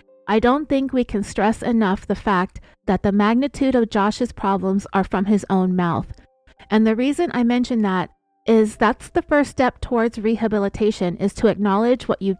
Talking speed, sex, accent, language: 185 wpm, female, American, English